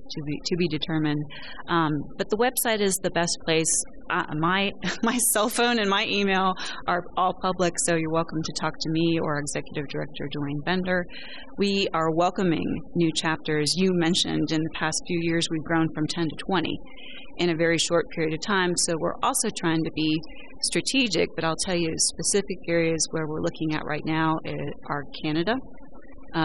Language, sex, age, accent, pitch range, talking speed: English, female, 30-49, American, 160-195 Hz, 190 wpm